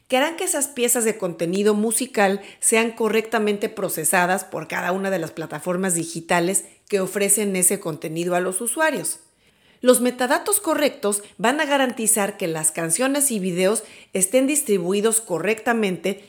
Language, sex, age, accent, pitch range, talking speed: Spanish, female, 40-59, Mexican, 180-235 Hz, 145 wpm